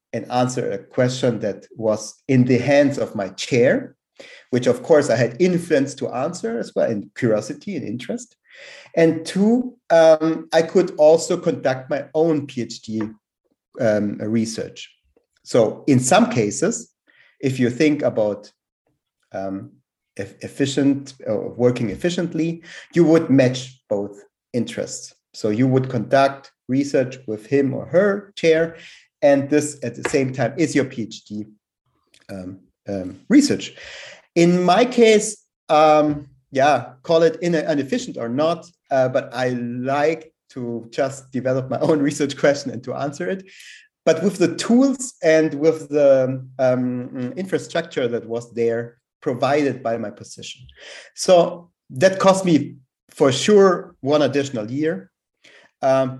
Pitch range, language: 120-165 Hz, English